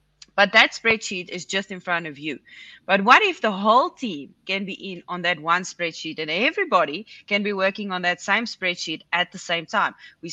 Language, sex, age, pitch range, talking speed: English, female, 20-39, 170-225 Hz, 210 wpm